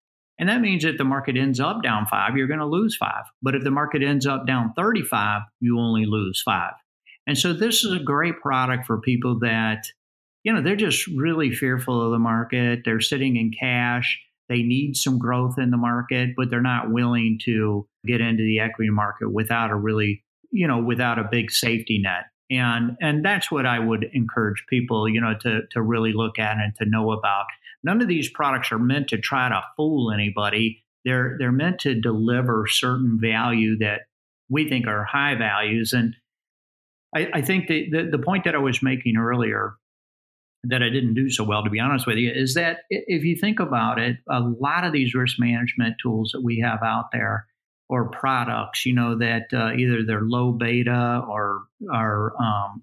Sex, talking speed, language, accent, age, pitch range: male, 200 wpm, English, American, 50-69, 115-140 Hz